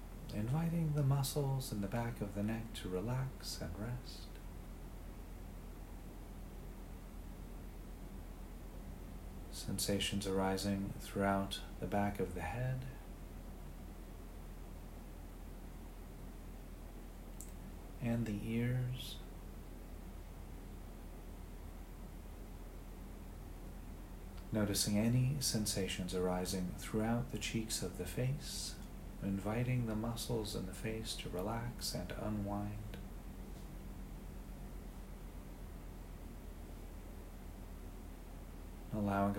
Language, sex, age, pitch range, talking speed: English, male, 40-59, 75-105 Hz, 70 wpm